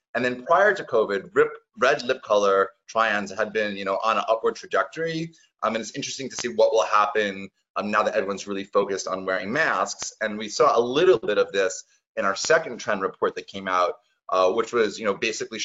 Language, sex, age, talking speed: English, male, 30-49, 225 wpm